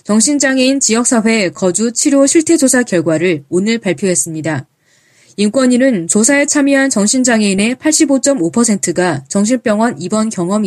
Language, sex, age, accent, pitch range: Korean, female, 20-39, native, 175-265 Hz